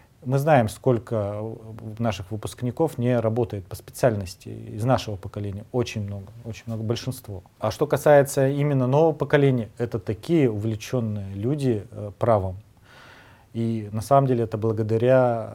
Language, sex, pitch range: Russian, male, 105-120 Hz